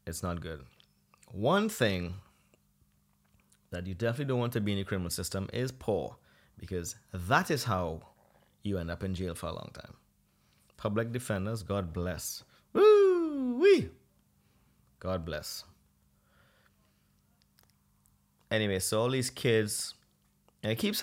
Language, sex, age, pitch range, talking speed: English, male, 30-49, 90-115 Hz, 130 wpm